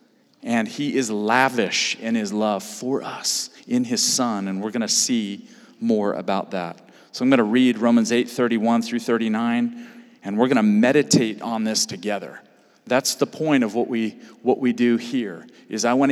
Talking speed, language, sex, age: 190 wpm, English, male, 40-59